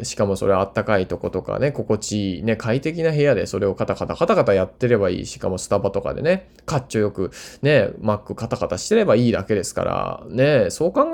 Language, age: Japanese, 20-39